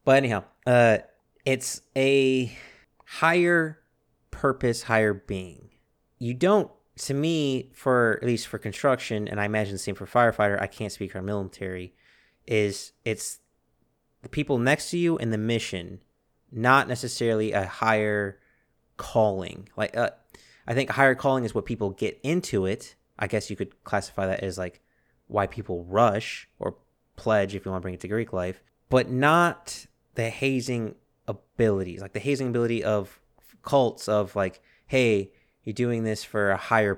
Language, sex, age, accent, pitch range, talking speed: English, male, 30-49, American, 100-130 Hz, 160 wpm